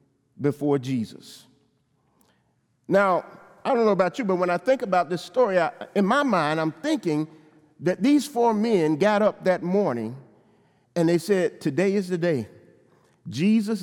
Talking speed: 160 wpm